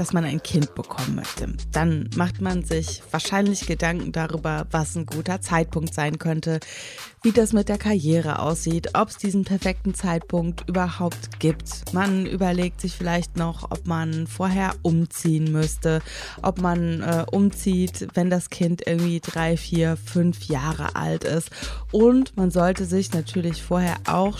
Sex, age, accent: female, 20-39, German